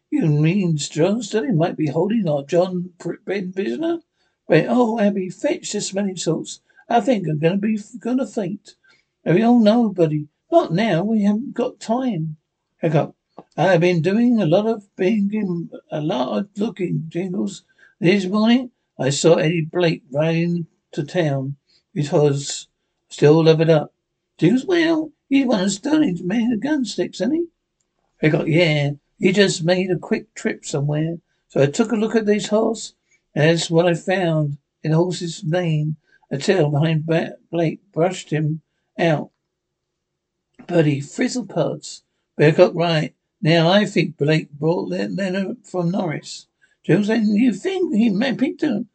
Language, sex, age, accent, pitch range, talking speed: English, male, 60-79, British, 165-225 Hz, 165 wpm